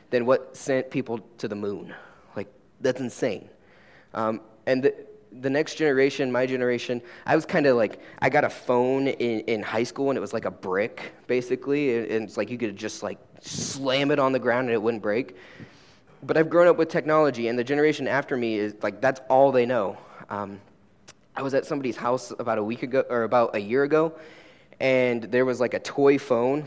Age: 20-39